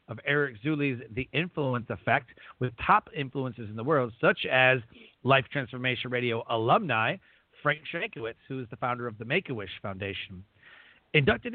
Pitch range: 125-165 Hz